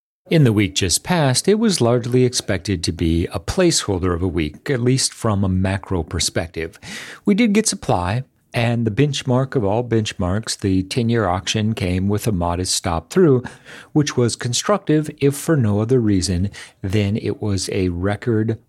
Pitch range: 95-125 Hz